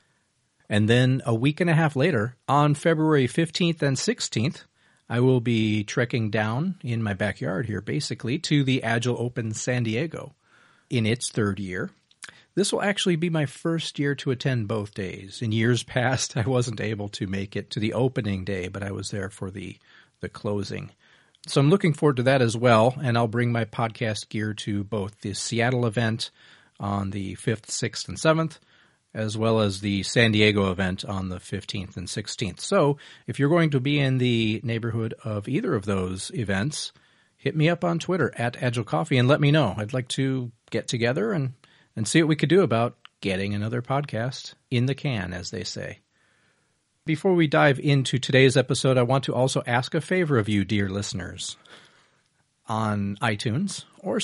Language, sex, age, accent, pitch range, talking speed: English, male, 40-59, American, 105-145 Hz, 190 wpm